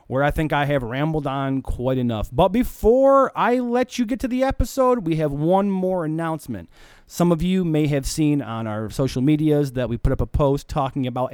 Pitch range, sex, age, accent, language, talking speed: 115-165 Hz, male, 30-49, American, English, 215 wpm